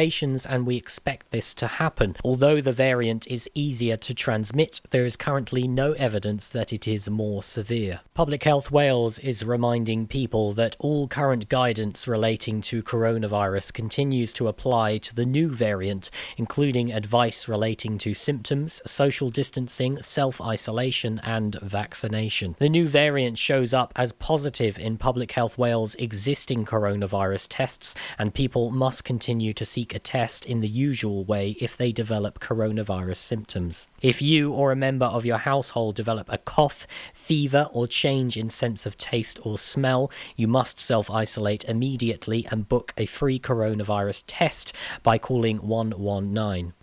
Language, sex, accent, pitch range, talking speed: English, male, British, 105-130 Hz, 150 wpm